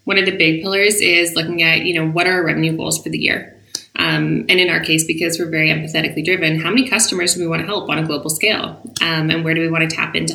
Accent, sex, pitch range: American, female, 160-185 Hz